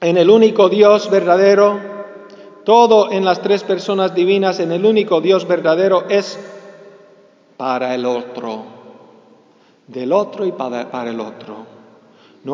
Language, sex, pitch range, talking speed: English, male, 140-210 Hz, 130 wpm